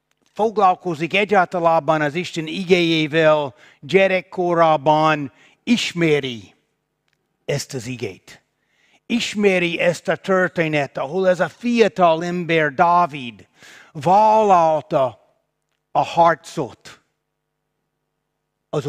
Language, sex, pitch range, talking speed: Hungarian, male, 155-200 Hz, 75 wpm